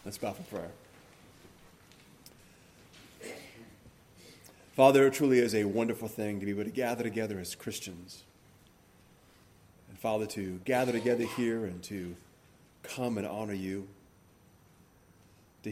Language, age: English, 40-59